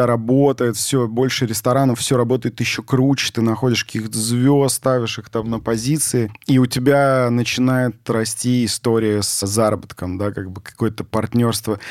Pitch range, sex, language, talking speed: 105-125 Hz, male, Russian, 150 wpm